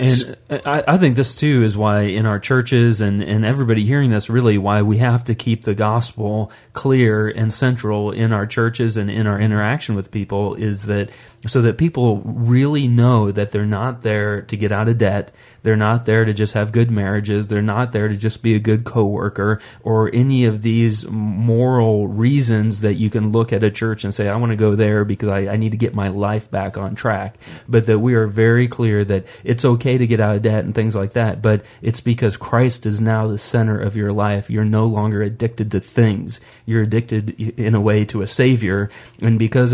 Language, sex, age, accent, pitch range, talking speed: English, male, 30-49, American, 105-115 Hz, 215 wpm